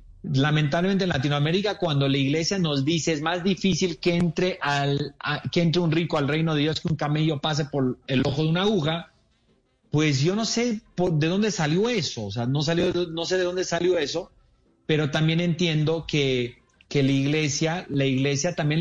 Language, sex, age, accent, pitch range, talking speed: English, male, 40-59, Mexican, 145-175 Hz, 200 wpm